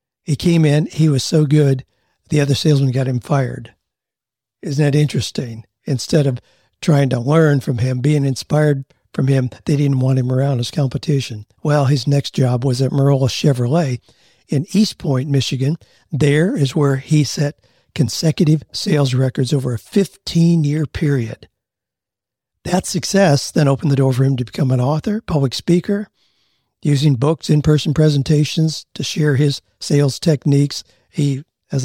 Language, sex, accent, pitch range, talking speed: English, male, American, 130-160 Hz, 155 wpm